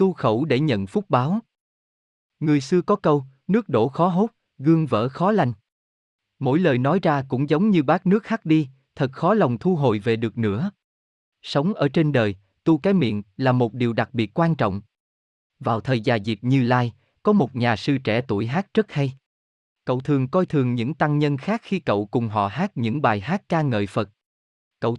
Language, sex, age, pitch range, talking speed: Vietnamese, male, 20-39, 110-160 Hz, 205 wpm